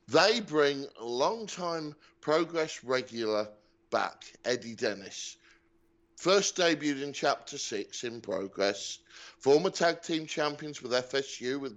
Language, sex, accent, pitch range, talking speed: English, male, British, 110-150 Hz, 115 wpm